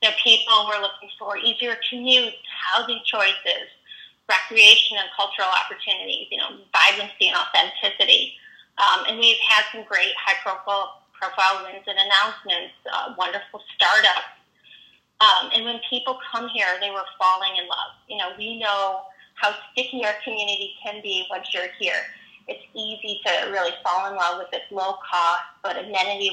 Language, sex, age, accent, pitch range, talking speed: English, female, 30-49, American, 190-230 Hz, 160 wpm